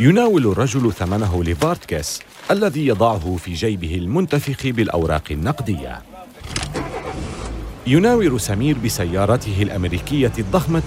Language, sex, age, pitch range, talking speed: Arabic, male, 40-59, 90-135 Hz, 90 wpm